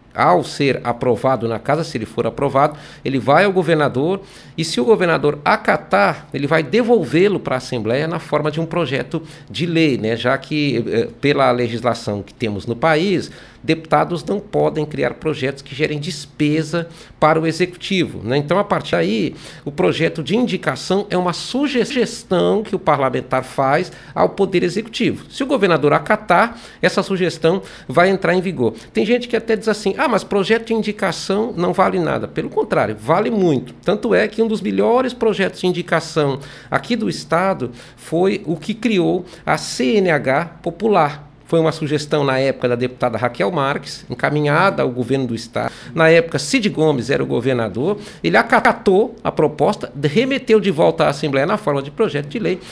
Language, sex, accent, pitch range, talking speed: Portuguese, male, Brazilian, 140-200 Hz, 175 wpm